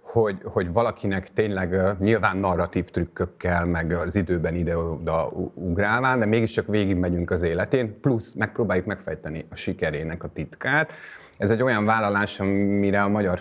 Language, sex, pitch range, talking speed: Hungarian, male, 90-105 Hz, 140 wpm